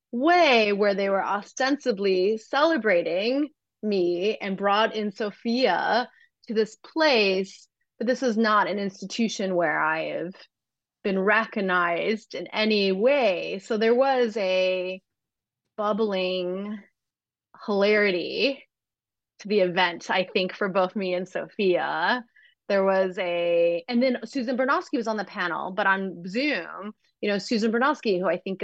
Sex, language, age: female, English, 30-49